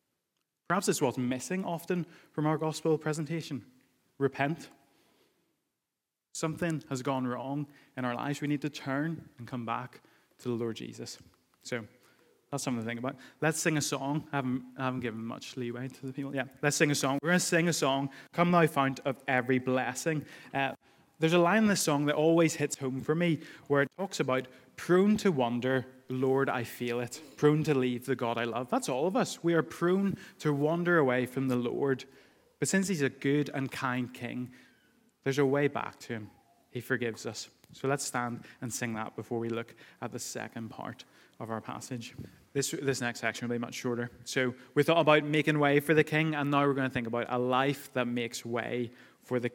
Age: 20-39